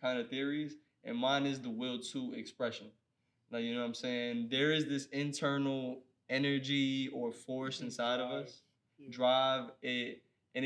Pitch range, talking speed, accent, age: 120-150 Hz, 165 wpm, American, 20-39